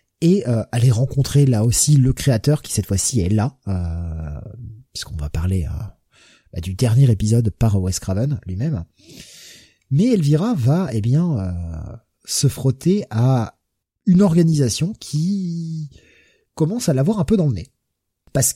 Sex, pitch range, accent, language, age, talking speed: male, 105-150 Hz, French, French, 30-49, 150 wpm